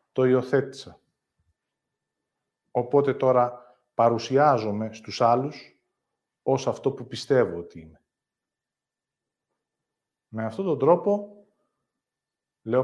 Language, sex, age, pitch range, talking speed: Greek, male, 40-59, 110-135 Hz, 85 wpm